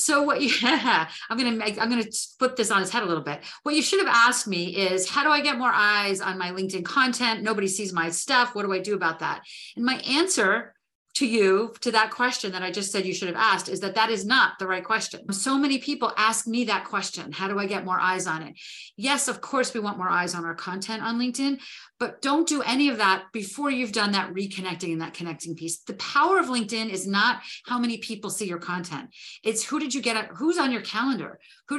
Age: 40-59